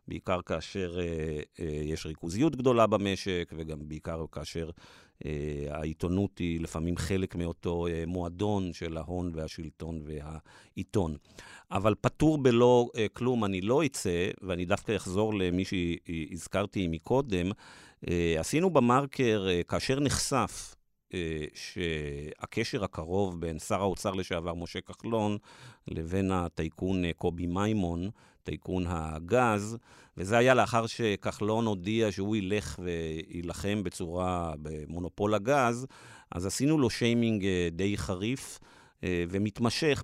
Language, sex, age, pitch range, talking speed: Hebrew, male, 50-69, 85-110 Hz, 115 wpm